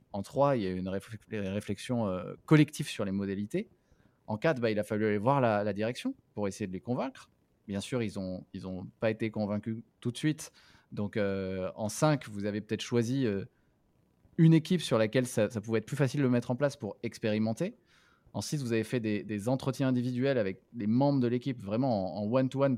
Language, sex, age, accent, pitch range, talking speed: French, male, 20-39, French, 100-125 Hz, 225 wpm